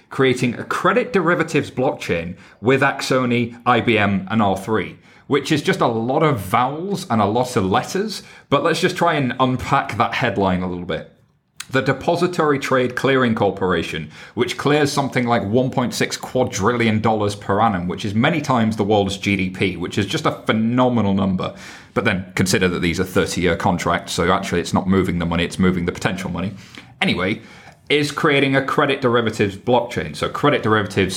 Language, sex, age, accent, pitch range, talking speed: English, male, 30-49, British, 100-140 Hz, 170 wpm